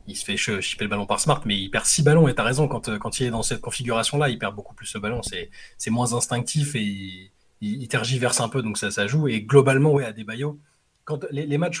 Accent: French